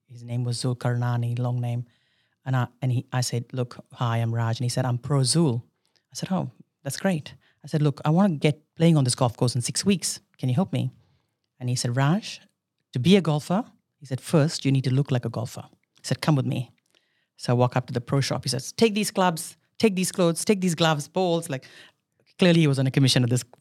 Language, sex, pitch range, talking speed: English, female, 125-165 Hz, 250 wpm